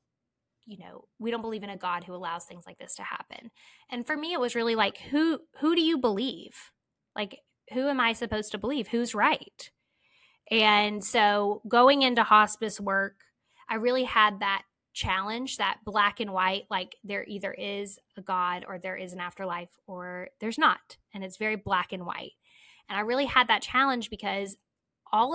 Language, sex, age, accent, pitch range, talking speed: English, female, 10-29, American, 195-240 Hz, 185 wpm